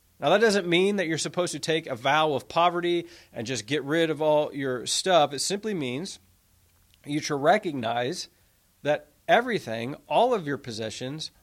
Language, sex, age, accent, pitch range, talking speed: English, male, 40-59, American, 135-195 Hz, 175 wpm